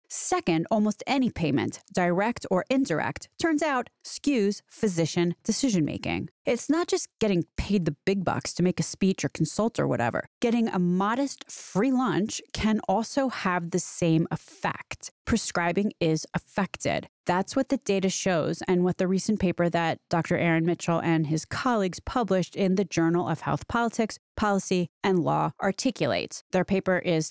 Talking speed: 160 wpm